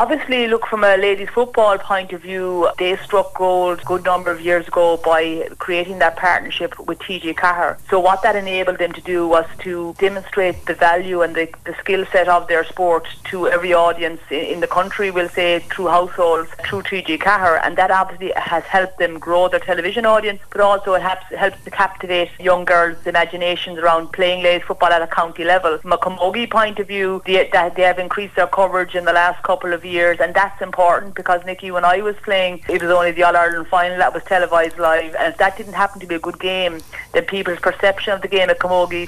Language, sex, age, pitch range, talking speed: English, female, 30-49, 175-190 Hz, 220 wpm